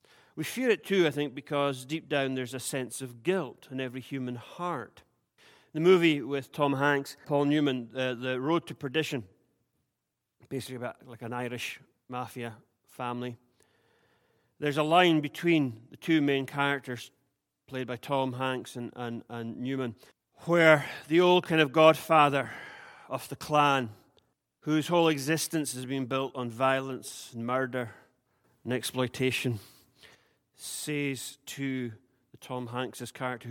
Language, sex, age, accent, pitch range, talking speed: English, male, 40-59, British, 125-145 Hz, 140 wpm